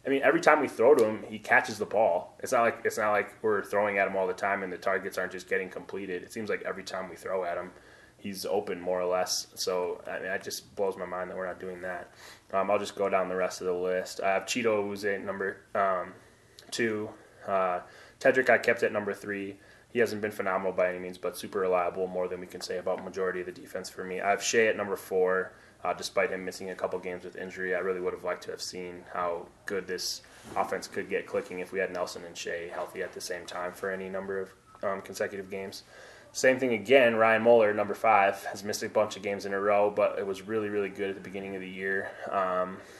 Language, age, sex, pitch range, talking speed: English, 20-39, male, 90-105 Hz, 255 wpm